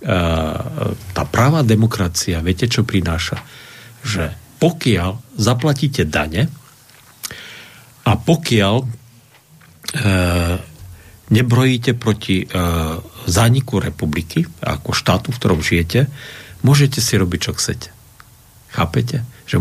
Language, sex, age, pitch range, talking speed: Slovak, male, 50-69, 90-120 Hz, 90 wpm